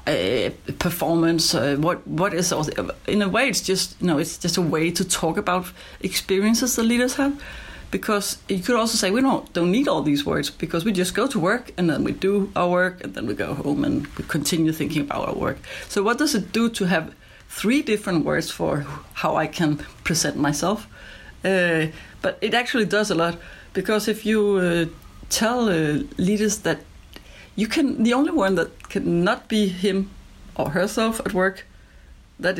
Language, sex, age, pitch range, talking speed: English, female, 70-89, 165-220 Hz, 195 wpm